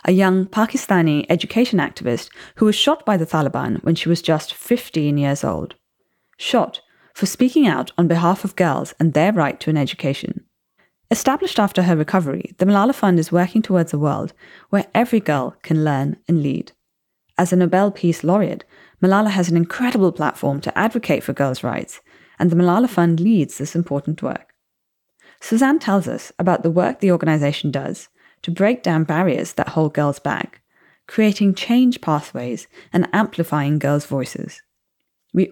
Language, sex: English, female